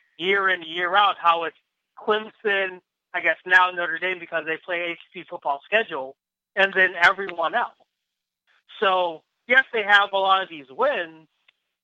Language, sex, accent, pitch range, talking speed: English, male, American, 180-240 Hz, 155 wpm